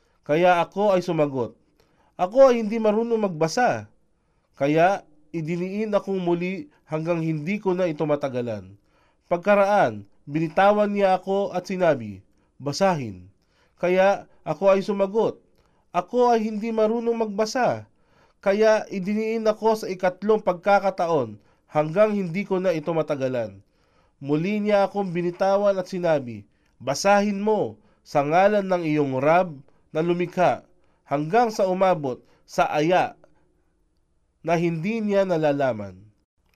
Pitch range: 140-205 Hz